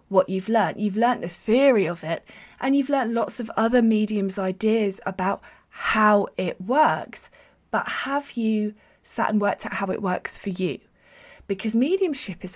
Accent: British